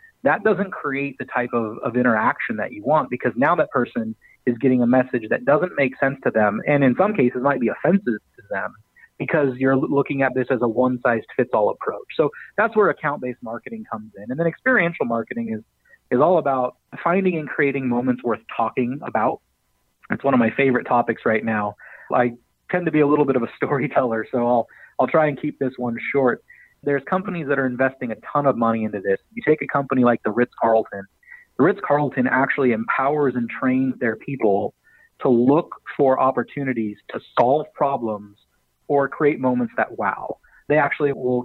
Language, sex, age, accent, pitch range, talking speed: English, male, 30-49, American, 120-145 Hz, 195 wpm